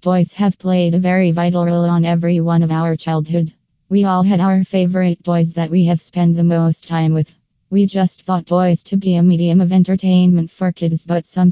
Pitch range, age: 165-180 Hz, 20-39